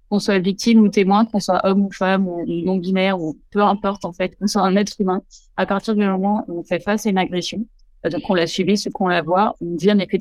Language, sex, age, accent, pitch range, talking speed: French, female, 30-49, French, 170-195 Hz, 270 wpm